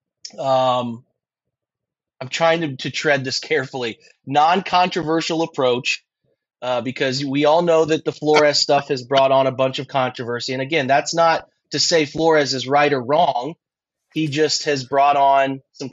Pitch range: 135-165 Hz